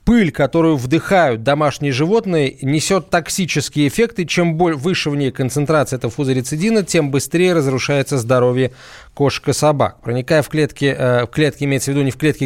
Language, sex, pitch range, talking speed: Russian, male, 130-165 Hz, 160 wpm